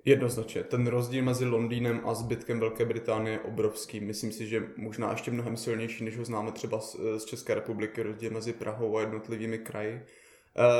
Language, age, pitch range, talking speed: Czech, 20-39, 115-140 Hz, 185 wpm